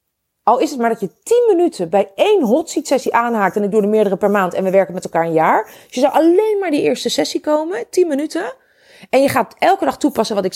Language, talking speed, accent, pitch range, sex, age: Dutch, 260 wpm, Dutch, 180-275 Hz, female, 40-59